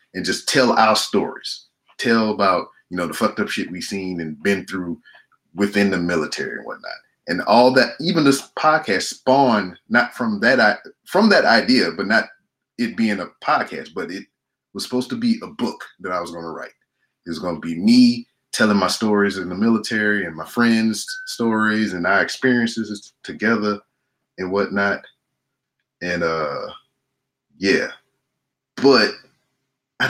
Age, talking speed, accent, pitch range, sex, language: 30-49, 165 wpm, American, 95-125 Hz, male, English